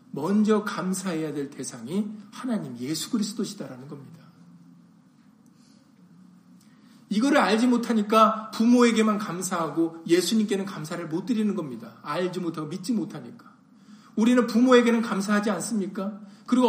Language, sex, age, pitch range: Korean, male, 40-59, 195-240 Hz